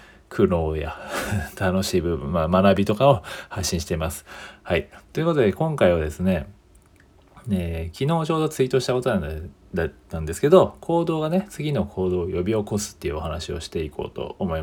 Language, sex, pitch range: Japanese, male, 90-140 Hz